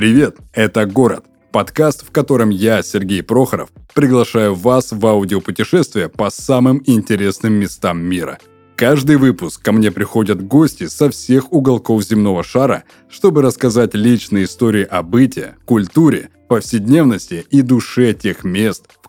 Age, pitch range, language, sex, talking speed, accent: 20-39, 95-125 Hz, Russian, male, 135 wpm, native